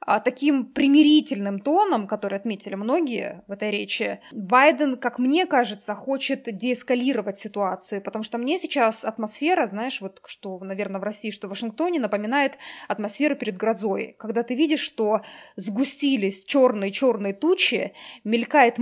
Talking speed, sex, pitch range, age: 140 wpm, female, 215-275 Hz, 20-39